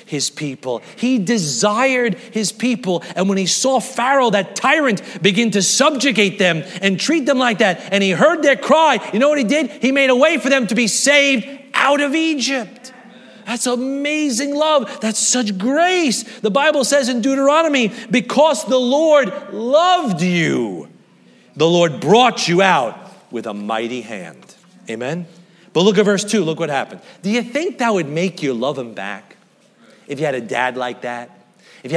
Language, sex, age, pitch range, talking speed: English, male, 40-59, 180-270 Hz, 180 wpm